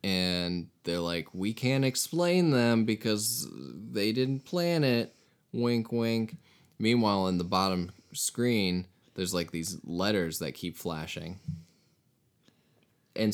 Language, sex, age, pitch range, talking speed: English, male, 20-39, 80-110 Hz, 120 wpm